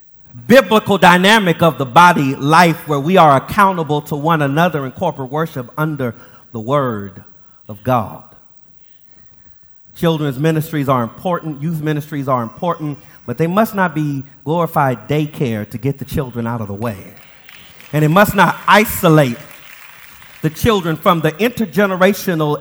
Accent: American